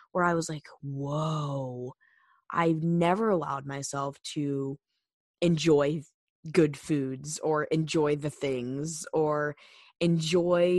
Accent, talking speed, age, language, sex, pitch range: American, 105 wpm, 10-29, English, female, 145-170 Hz